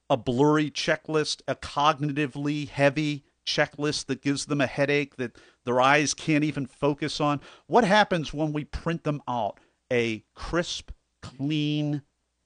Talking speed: 140 wpm